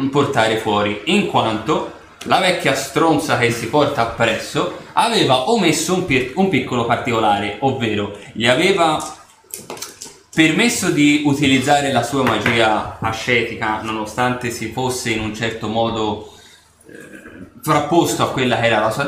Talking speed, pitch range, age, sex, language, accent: 130 wpm, 110-145 Hz, 20-39, male, Italian, native